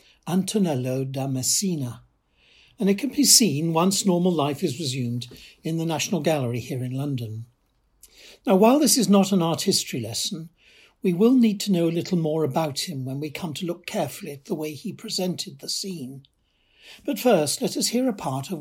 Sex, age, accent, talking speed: male, 60-79, British, 195 wpm